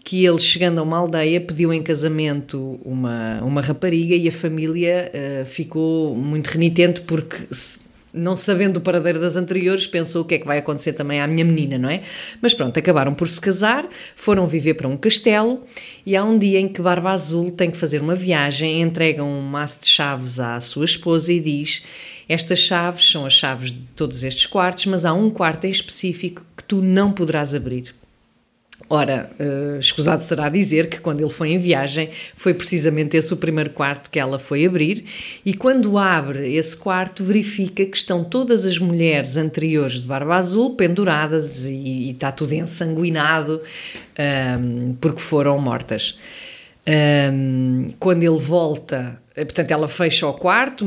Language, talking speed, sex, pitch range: English, 170 wpm, female, 145-180 Hz